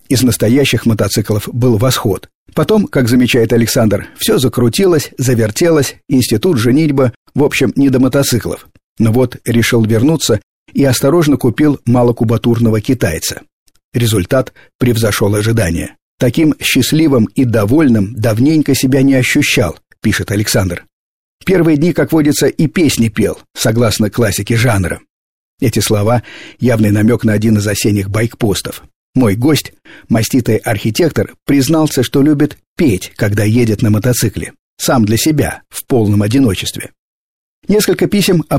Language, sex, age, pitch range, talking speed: Russian, male, 50-69, 110-135 Hz, 125 wpm